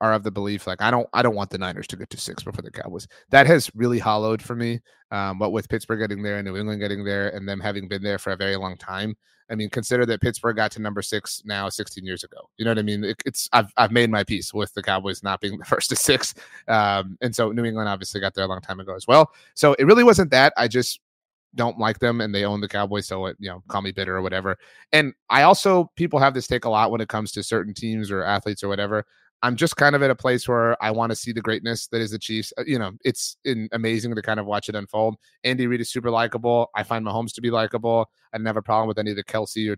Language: English